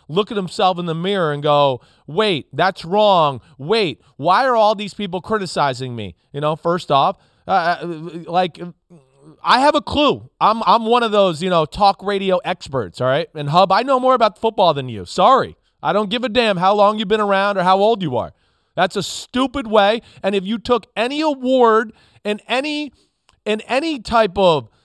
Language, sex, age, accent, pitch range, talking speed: English, male, 30-49, American, 165-220 Hz, 200 wpm